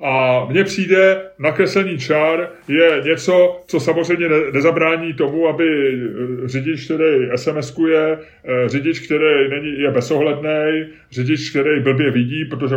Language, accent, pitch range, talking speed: Czech, native, 125-155 Hz, 115 wpm